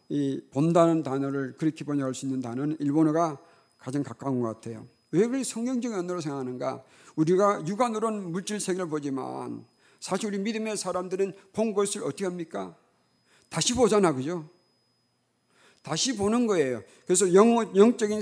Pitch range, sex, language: 140-195 Hz, male, Korean